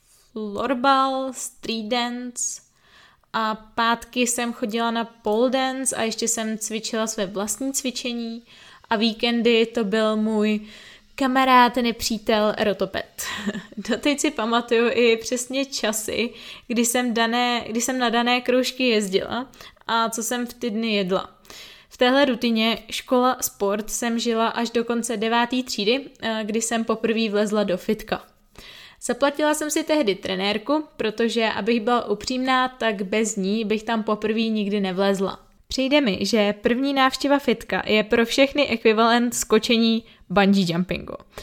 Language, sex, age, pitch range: Czech, female, 20-39, 215-245 Hz